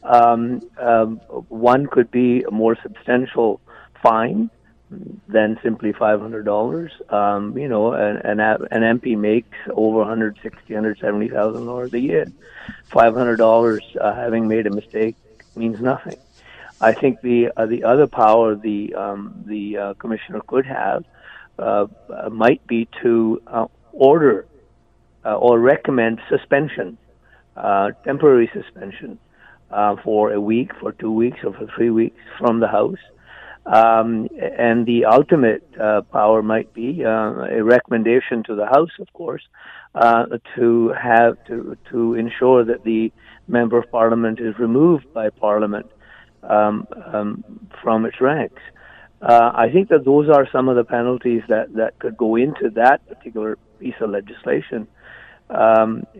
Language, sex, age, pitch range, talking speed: English, male, 50-69, 110-120 Hz, 150 wpm